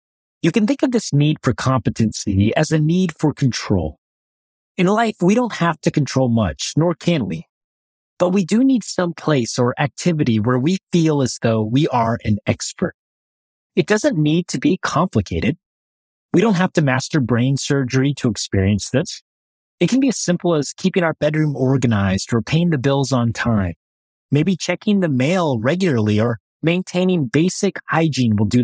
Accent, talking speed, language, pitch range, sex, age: American, 175 wpm, English, 115-175 Hz, male, 30-49